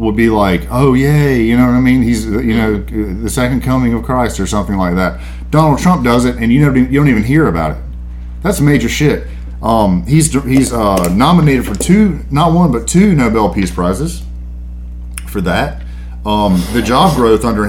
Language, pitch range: English, 75-110 Hz